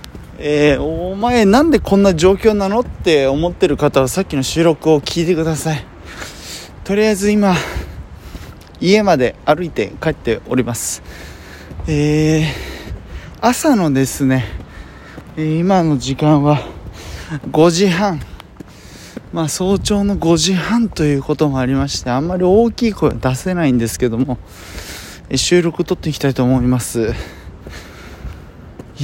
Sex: male